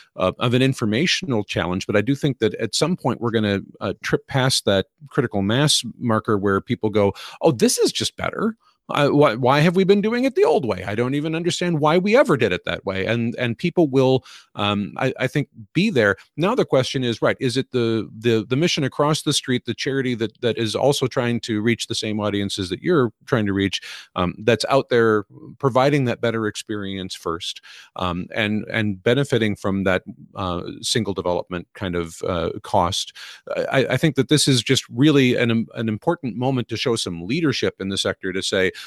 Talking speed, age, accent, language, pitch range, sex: 210 wpm, 40-59, American, English, 100-135 Hz, male